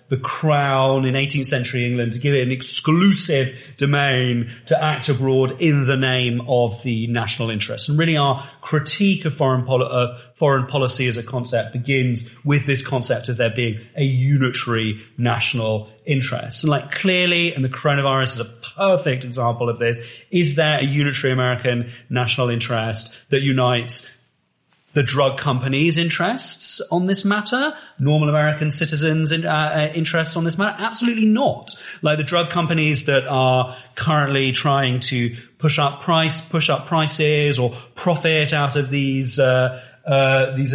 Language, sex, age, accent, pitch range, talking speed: English, male, 30-49, British, 125-155 Hz, 155 wpm